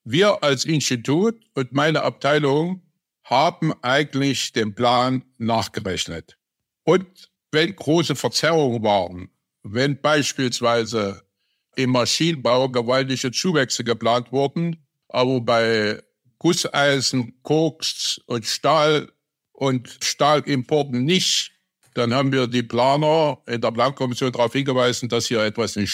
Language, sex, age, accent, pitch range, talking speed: German, male, 60-79, German, 115-145 Hz, 110 wpm